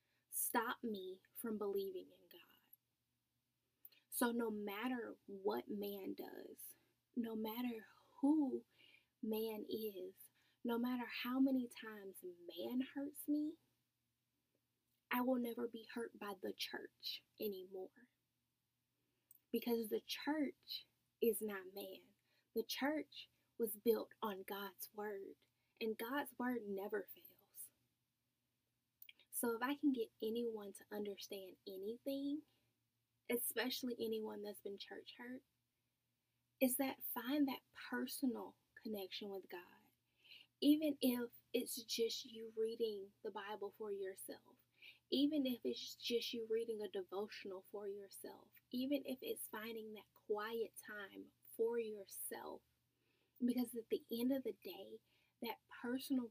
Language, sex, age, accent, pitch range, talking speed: English, female, 10-29, American, 200-250 Hz, 120 wpm